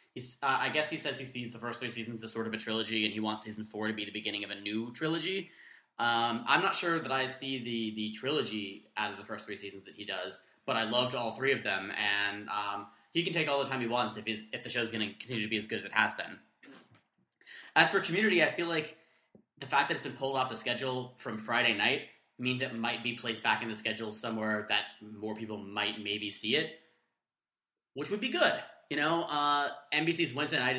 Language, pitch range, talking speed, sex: English, 110-135 Hz, 245 wpm, male